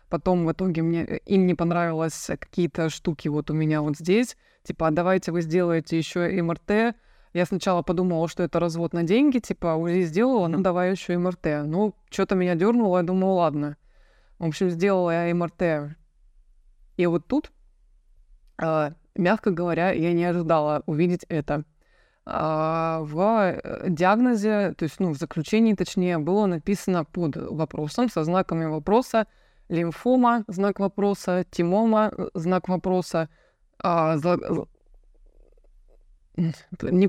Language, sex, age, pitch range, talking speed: Russian, female, 20-39, 165-195 Hz, 130 wpm